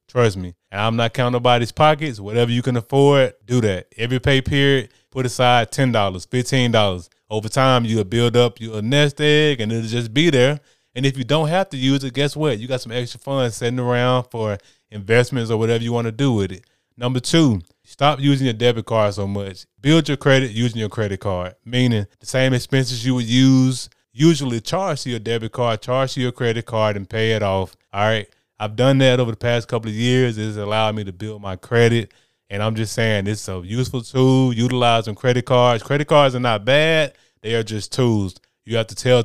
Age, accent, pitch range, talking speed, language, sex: 20-39, American, 110-130 Hz, 220 wpm, English, male